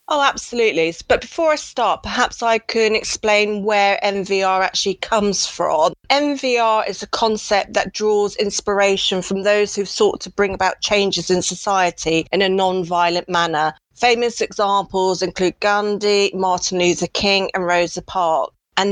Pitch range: 185-225 Hz